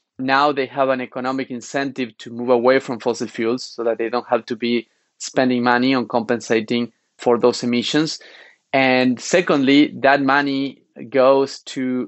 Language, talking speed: English, 160 wpm